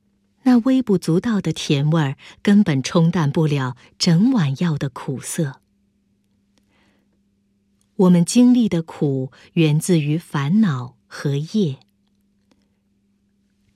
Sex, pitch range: female, 125-185 Hz